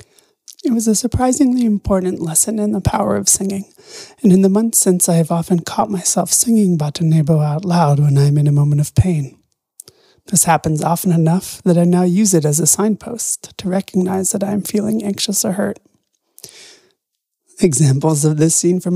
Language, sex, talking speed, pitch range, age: English, male, 185 wpm, 170-230 Hz, 30-49